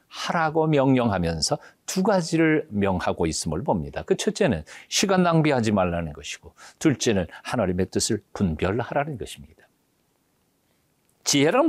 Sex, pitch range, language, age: male, 110-160 Hz, Korean, 50-69